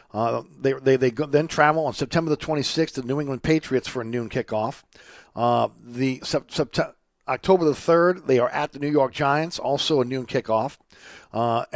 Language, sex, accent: English, male, American